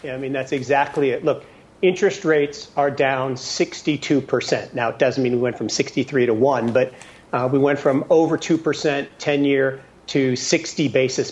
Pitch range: 130-150 Hz